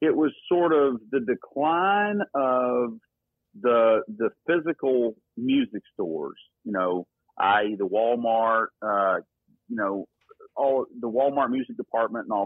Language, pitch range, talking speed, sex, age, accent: English, 115-170 Hz, 130 wpm, male, 40-59, American